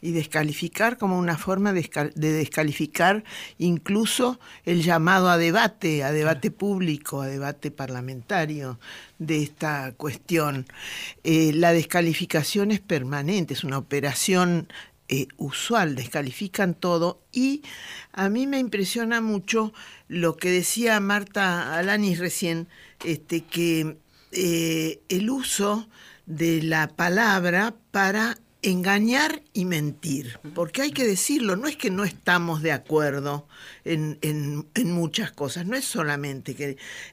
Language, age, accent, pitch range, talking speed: Spanish, 50-69, Argentinian, 155-200 Hz, 125 wpm